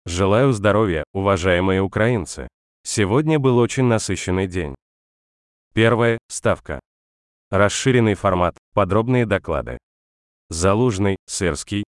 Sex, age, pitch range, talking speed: male, 20-39, 80-115 Hz, 85 wpm